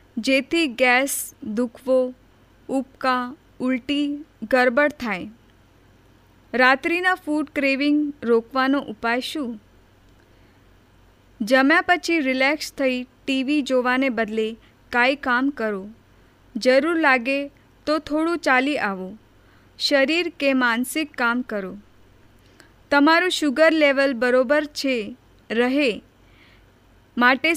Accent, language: native, Gujarati